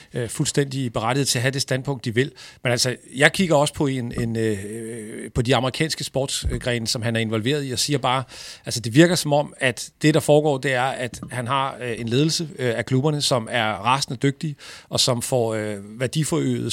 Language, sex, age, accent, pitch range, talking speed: Danish, male, 40-59, native, 125-150 Hz, 200 wpm